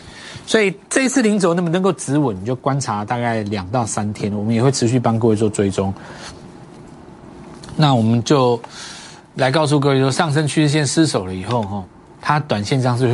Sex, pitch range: male, 115-165 Hz